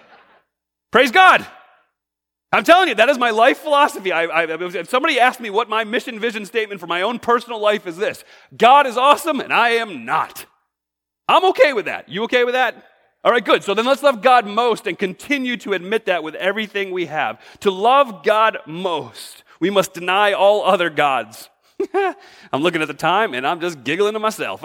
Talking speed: 190 wpm